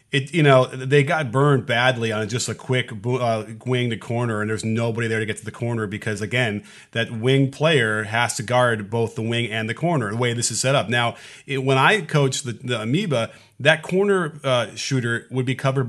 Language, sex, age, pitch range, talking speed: English, male, 30-49, 120-150 Hz, 225 wpm